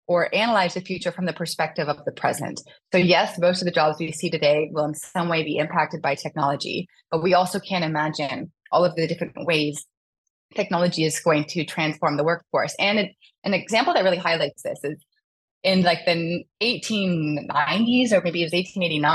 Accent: American